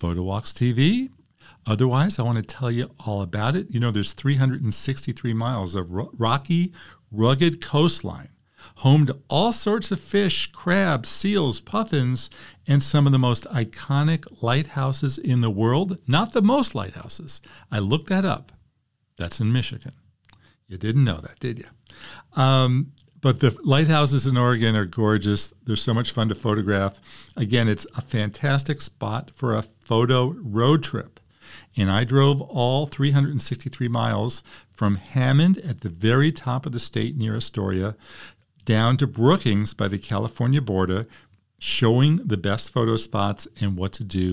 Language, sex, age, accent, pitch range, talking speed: English, male, 50-69, American, 105-140 Hz, 155 wpm